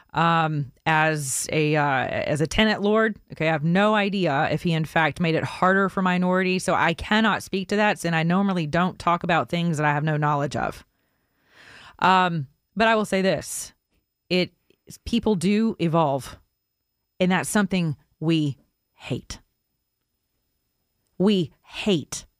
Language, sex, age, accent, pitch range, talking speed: English, female, 30-49, American, 145-180 Hz, 155 wpm